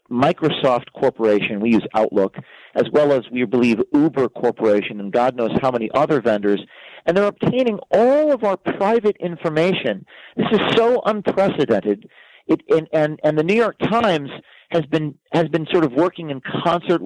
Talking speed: 170 wpm